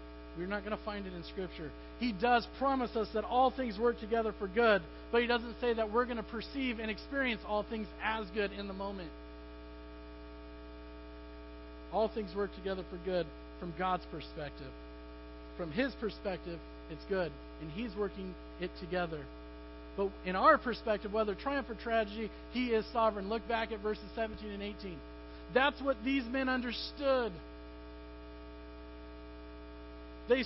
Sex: male